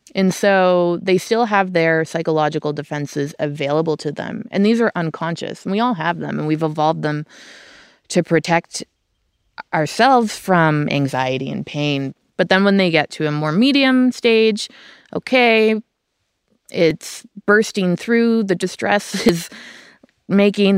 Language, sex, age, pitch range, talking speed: English, female, 20-39, 150-195 Hz, 140 wpm